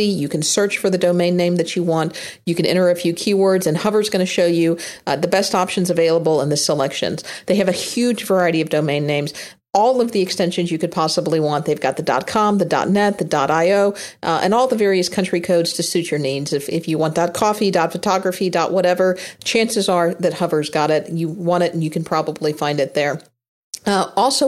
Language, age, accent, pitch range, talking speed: English, 40-59, American, 165-200 Hz, 220 wpm